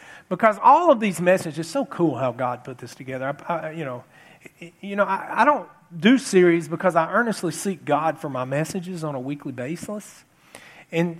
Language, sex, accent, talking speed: English, male, American, 195 wpm